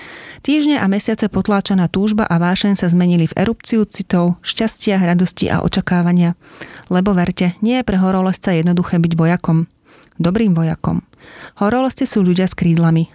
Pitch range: 175-210 Hz